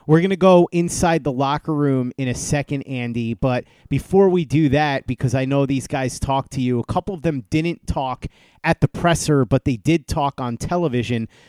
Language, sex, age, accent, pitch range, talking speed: English, male, 30-49, American, 130-165 Hz, 210 wpm